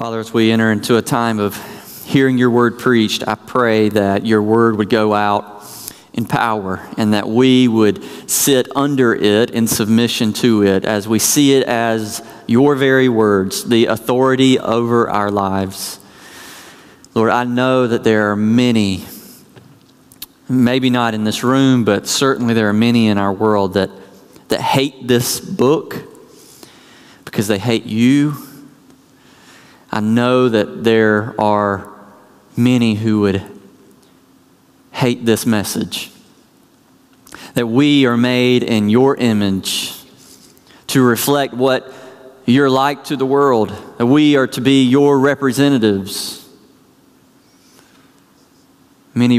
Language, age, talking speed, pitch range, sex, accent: English, 40-59, 130 wpm, 105-125 Hz, male, American